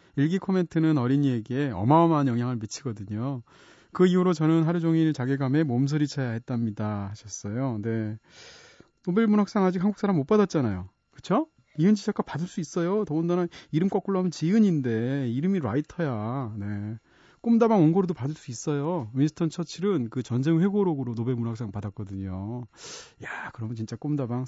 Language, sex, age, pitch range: Korean, male, 30-49, 120-175 Hz